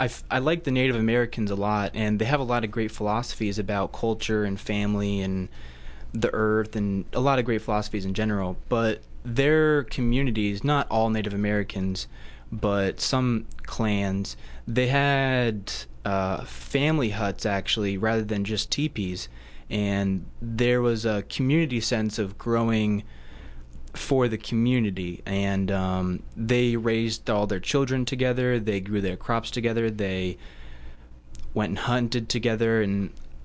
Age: 20-39